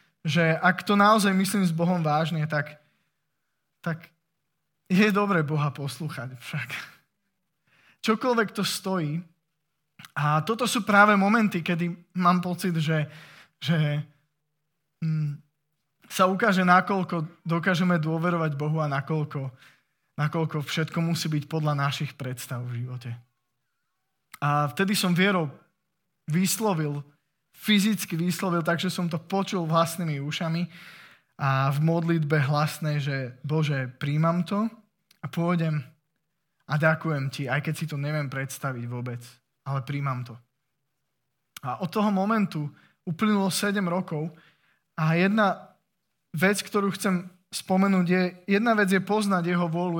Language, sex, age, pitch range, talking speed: Slovak, male, 20-39, 150-185 Hz, 120 wpm